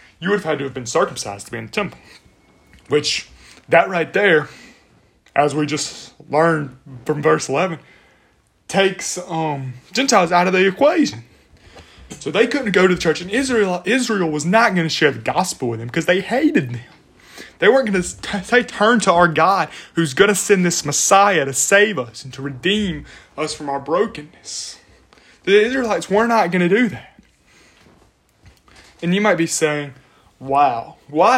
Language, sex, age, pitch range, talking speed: English, male, 20-39, 130-180 Hz, 180 wpm